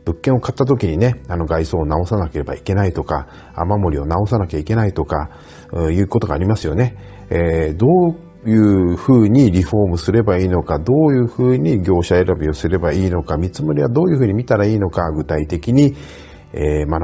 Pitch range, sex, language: 80-110 Hz, male, Japanese